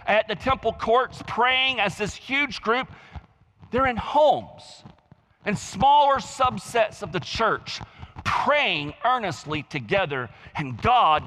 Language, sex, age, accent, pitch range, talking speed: English, male, 40-59, American, 145-210 Hz, 120 wpm